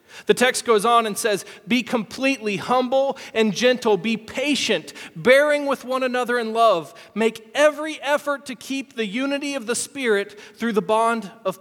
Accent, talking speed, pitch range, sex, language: American, 170 wpm, 215-270 Hz, male, English